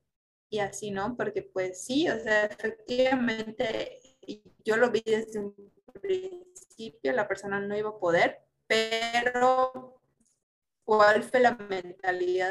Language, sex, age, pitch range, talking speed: Spanish, female, 20-39, 195-245 Hz, 125 wpm